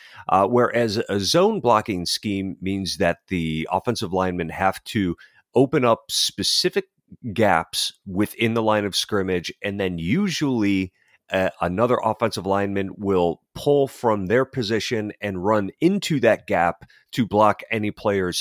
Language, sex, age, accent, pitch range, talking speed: English, male, 40-59, American, 95-120 Hz, 140 wpm